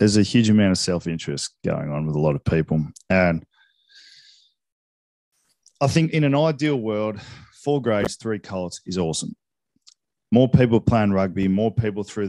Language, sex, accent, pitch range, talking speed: English, male, Australian, 90-115 Hz, 160 wpm